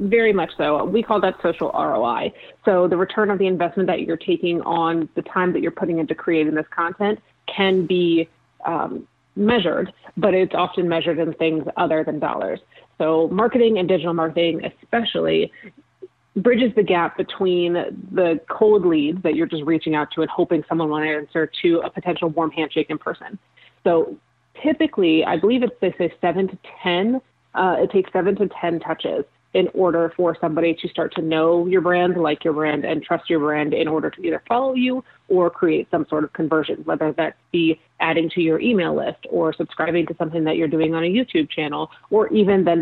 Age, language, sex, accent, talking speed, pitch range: 30-49, English, female, American, 195 wpm, 160-190 Hz